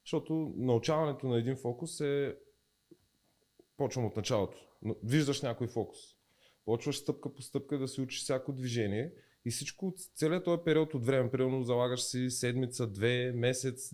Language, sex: Bulgarian, male